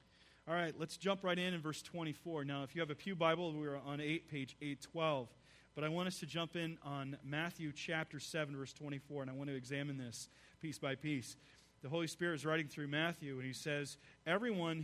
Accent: American